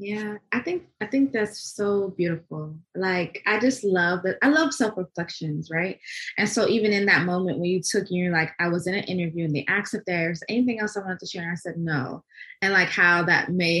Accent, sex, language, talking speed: American, female, English, 230 wpm